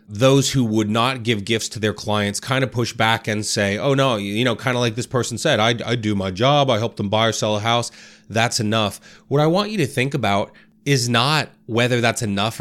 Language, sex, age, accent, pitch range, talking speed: English, male, 30-49, American, 110-140 Hz, 245 wpm